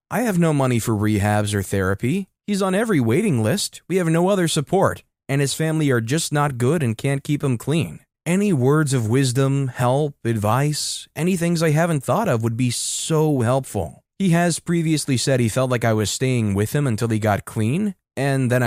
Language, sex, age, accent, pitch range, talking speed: English, male, 20-39, American, 115-160 Hz, 205 wpm